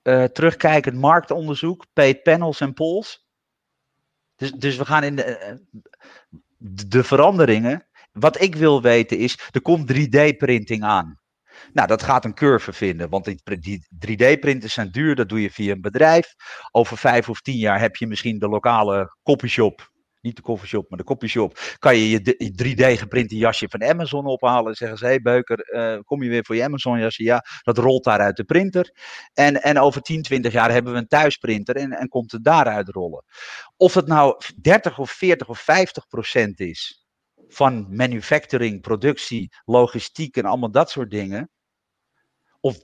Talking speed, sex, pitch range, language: 175 wpm, male, 115-145 Hz, Dutch